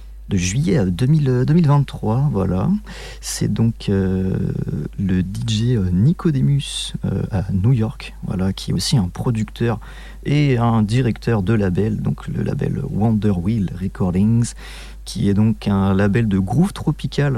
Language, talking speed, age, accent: French, 140 wpm, 40-59, French